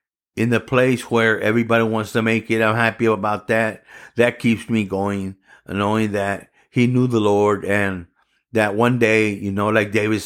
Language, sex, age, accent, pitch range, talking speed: English, male, 50-69, American, 105-120 Hz, 180 wpm